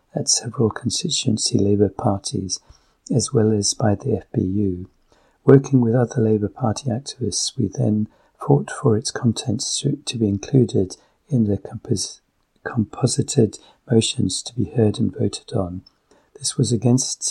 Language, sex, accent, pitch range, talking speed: English, male, British, 100-115 Hz, 140 wpm